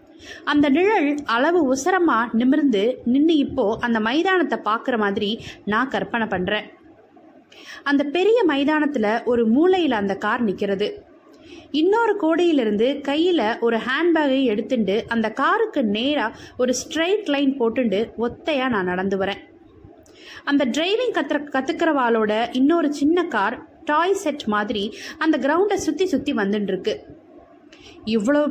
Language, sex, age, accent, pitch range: Tamil, female, 20-39, native, 225-325 Hz